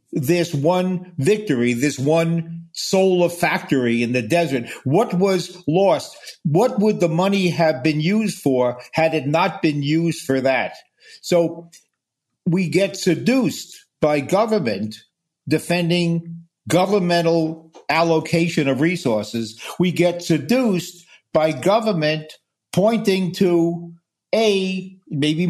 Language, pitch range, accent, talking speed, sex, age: English, 155-185 Hz, American, 115 wpm, male, 50-69